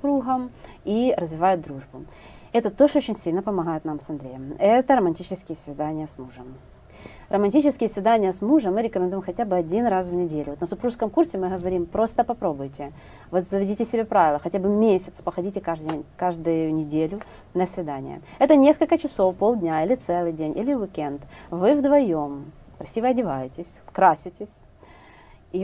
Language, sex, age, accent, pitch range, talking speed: Russian, female, 30-49, native, 155-210 Hz, 150 wpm